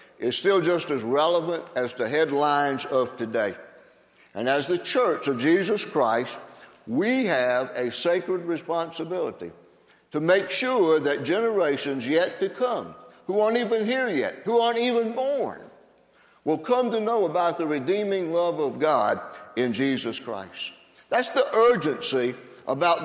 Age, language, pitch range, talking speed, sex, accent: 60-79, English, 140-210 Hz, 145 wpm, male, American